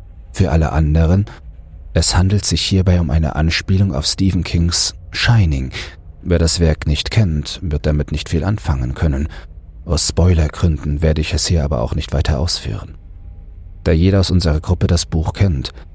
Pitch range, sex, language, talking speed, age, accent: 75-90 Hz, male, German, 165 wpm, 40-59, German